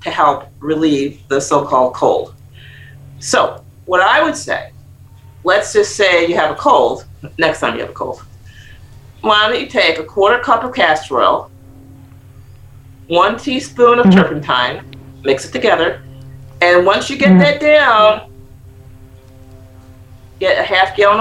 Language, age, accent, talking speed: English, 40-59, American, 145 wpm